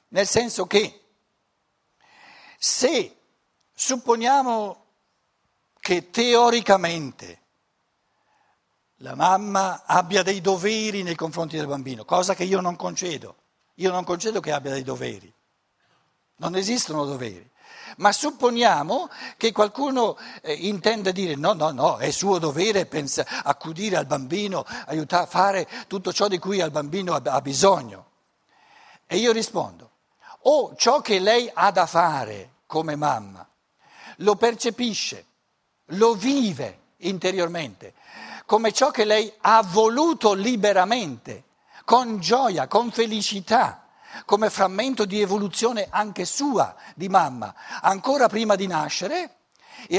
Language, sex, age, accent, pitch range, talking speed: Italian, male, 60-79, native, 170-225 Hz, 120 wpm